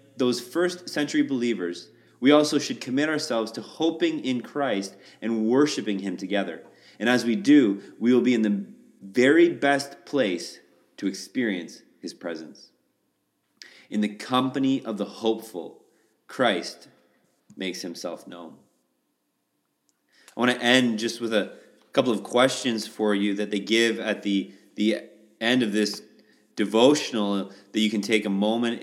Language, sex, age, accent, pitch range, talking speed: English, male, 30-49, American, 100-125 Hz, 150 wpm